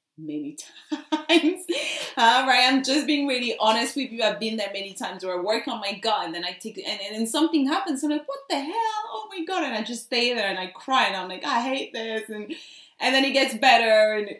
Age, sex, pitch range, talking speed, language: 30-49, female, 200-280 Hz, 265 wpm, English